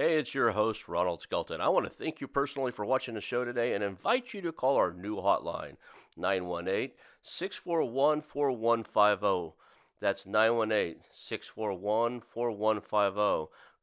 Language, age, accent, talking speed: English, 40-59, American, 120 wpm